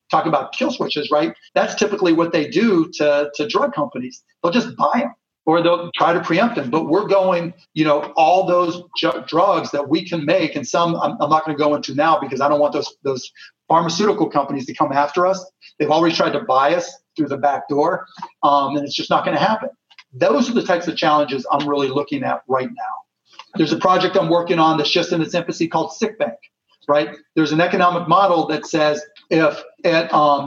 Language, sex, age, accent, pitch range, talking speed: English, male, 40-59, American, 150-180 Hz, 220 wpm